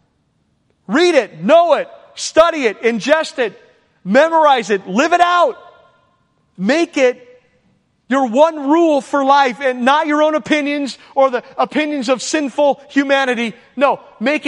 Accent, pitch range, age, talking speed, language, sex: American, 175-270 Hz, 40-59, 135 wpm, English, male